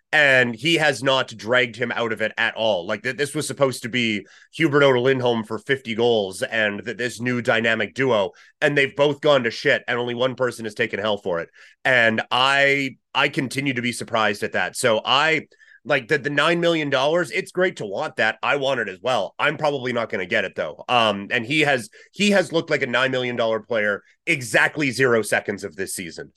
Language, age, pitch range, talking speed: English, 30-49, 115-145 Hz, 220 wpm